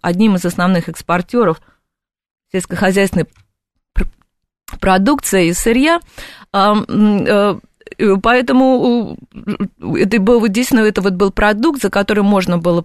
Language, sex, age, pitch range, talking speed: Russian, female, 20-39, 175-230 Hz, 80 wpm